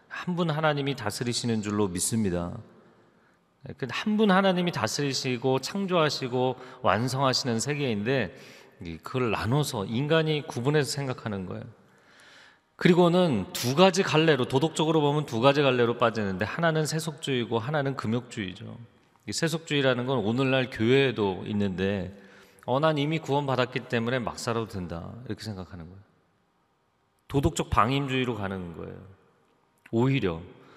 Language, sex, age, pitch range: Korean, male, 40-59, 110-160 Hz